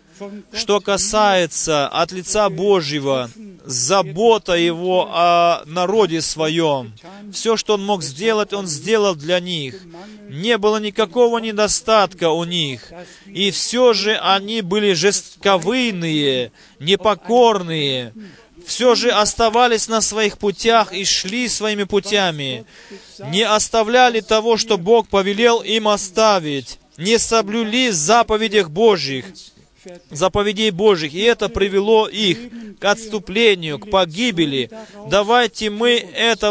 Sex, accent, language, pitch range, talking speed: male, native, Russian, 185-225 Hz, 110 wpm